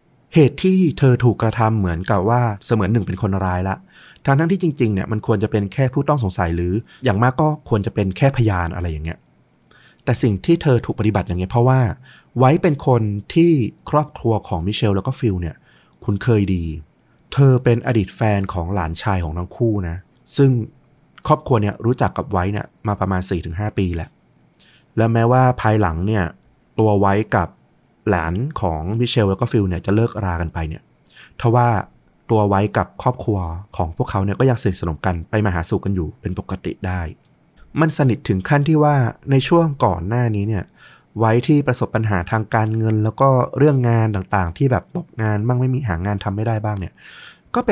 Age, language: 30-49, Thai